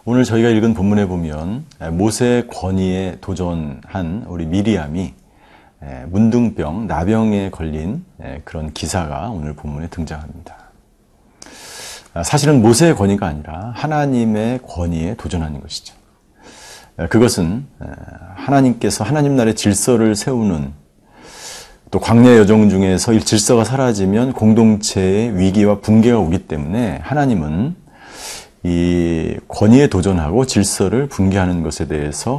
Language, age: Korean, 40-59